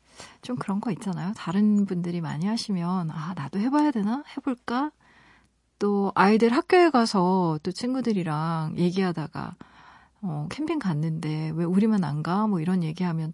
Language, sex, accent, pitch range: Korean, female, native, 175-230 Hz